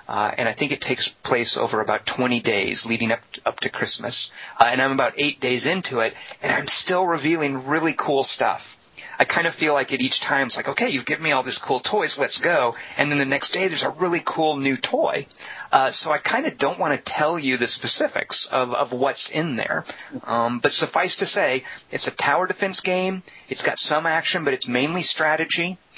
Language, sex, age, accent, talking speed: English, male, 30-49, American, 225 wpm